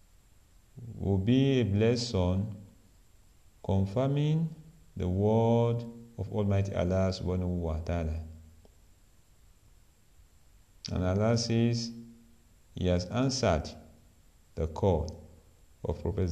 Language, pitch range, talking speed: English, 85-110 Hz, 75 wpm